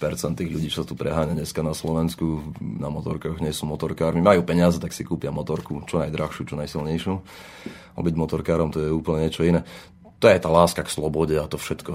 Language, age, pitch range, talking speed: Slovak, 30-49, 80-90 Hz, 205 wpm